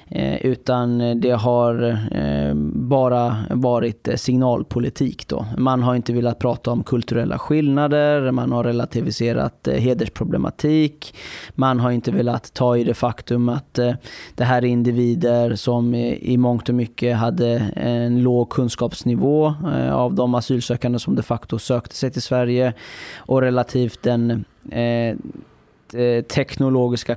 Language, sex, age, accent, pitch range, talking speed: Swedish, male, 20-39, native, 120-130 Hz, 135 wpm